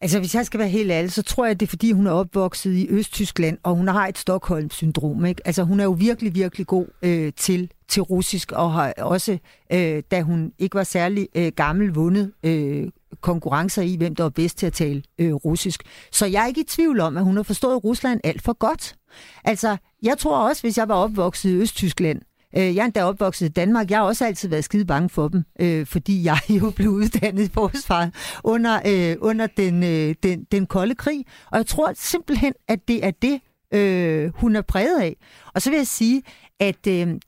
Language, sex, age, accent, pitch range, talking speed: Danish, female, 60-79, native, 175-215 Hz, 210 wpm